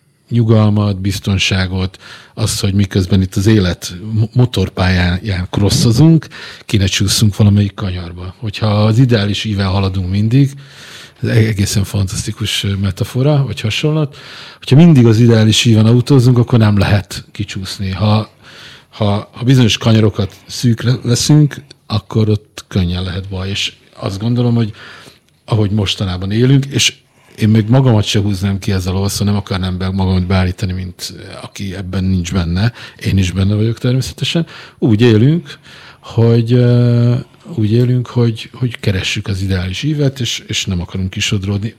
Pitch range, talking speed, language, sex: 100-120 Hz, 140 wpm, Hungarian, male